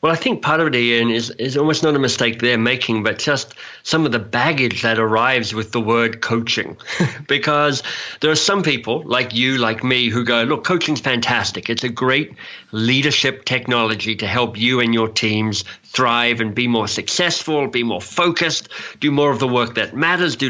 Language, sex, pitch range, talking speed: English, male, 115-140 Hz, 200 wpm